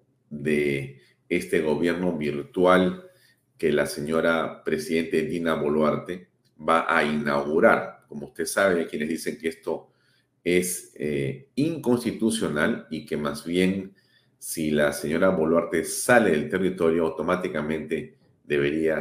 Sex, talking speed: male, 115 wpm